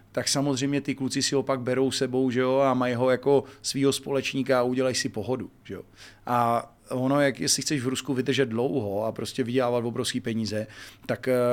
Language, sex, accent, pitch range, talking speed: Czech, male, native, 120-135 Hz, 195 wpm